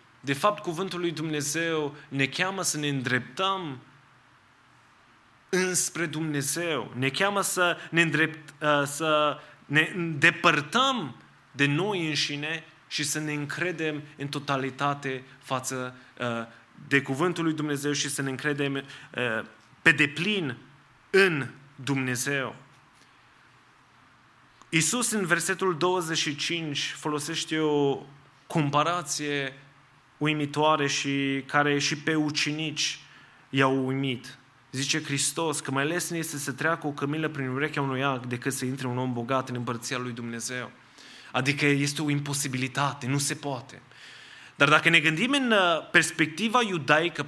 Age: 20-39